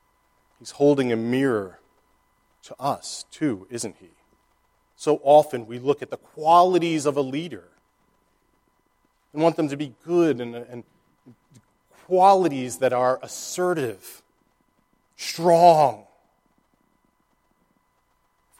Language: English